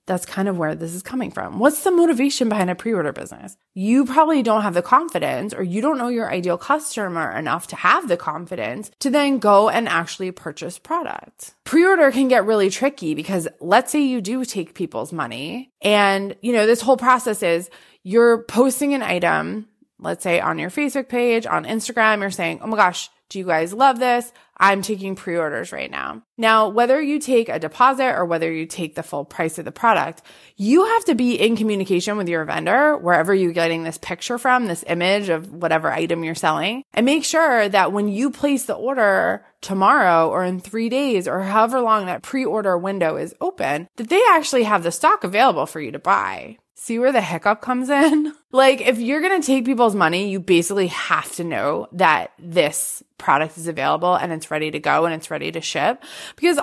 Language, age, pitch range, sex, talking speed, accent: English, 20-39, 175-255 Hz, female, 205 wpm, American